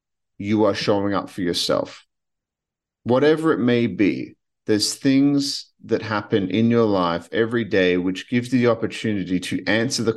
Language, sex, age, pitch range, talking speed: English, male, 40-59, 90-115 Hz, 160 wpm